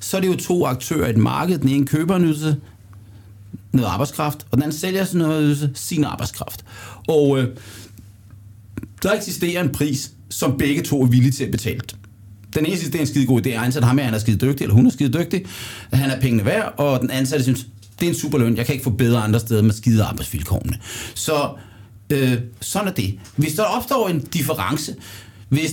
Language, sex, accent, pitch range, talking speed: Danish, male, native, 110-150 Hz, 215 wpm